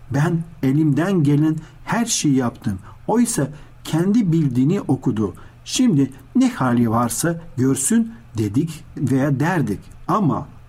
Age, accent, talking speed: 50-69, native, 105 wpm